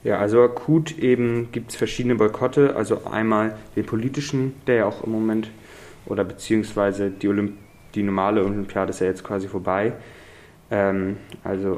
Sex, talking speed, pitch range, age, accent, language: male, 160 wpm, 100-115 Hz, 20-39, German, German